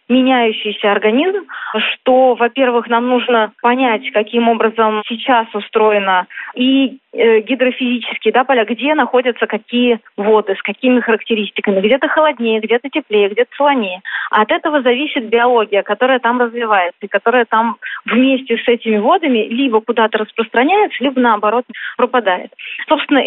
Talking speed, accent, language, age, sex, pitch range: 130 wpm, native, Russian, 20-39, female, 215-260 Hz